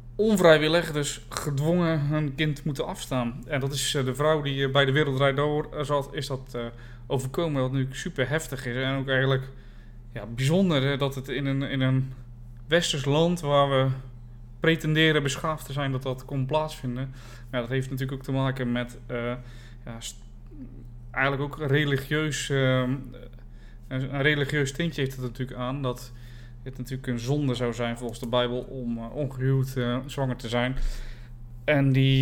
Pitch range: 120-145 Hz